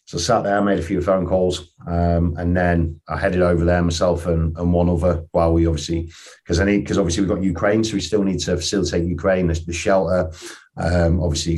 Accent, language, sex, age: British, English, male, 40-59